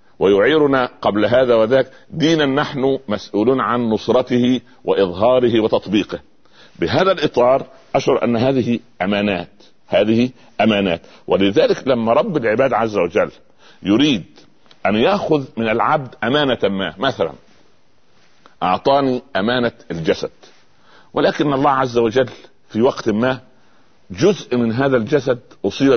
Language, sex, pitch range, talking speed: Arabic, male, 100-135 Hz, 110 wpm